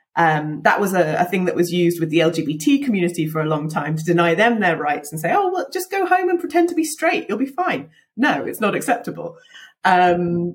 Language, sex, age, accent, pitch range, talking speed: English, female, 20-39, British, 160-185 Hz, 240 wpm